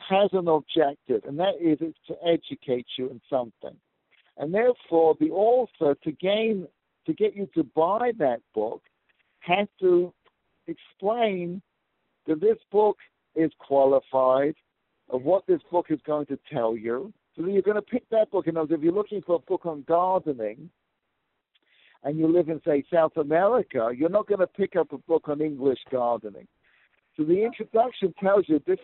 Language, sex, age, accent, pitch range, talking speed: English, male, 60-79, American, 155-200 Hz, 175 wpm